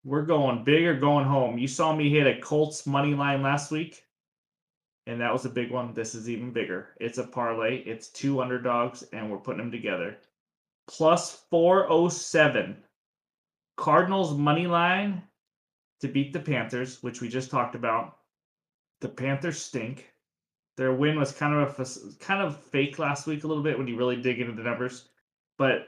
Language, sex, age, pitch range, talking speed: English, male, 20-39, 125-150 Hz, 180 wpm